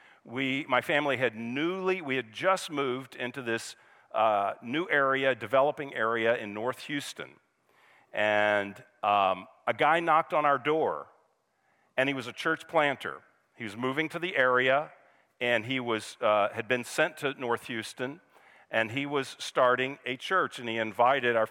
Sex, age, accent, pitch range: male, 50-69, American, 120-145 Hz